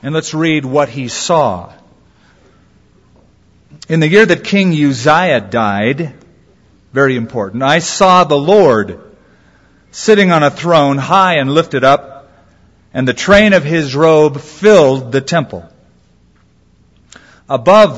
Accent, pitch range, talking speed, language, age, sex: American, 130-175 Hz, 125 wpm, English, 50-69, male